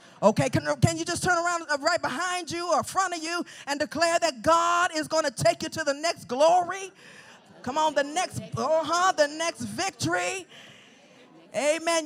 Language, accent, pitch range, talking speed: English, American, 275-355 Hz, 175 wpm